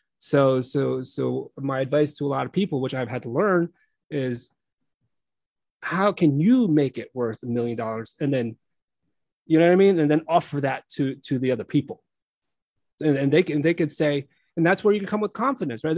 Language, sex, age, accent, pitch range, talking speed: English, male, 30-49, American, 140-180 Hz, 215 wpm